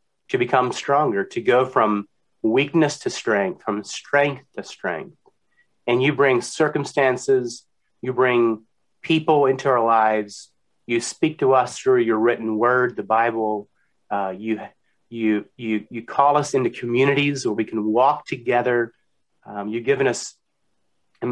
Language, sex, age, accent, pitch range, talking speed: English, male, 30-49, American, 110-135 Hz, 145 wpm